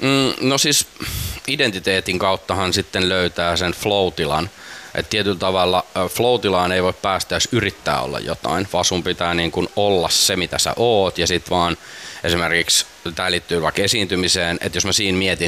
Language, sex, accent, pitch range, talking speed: Finnish, male, native, 80-100 Hz, 160 wpm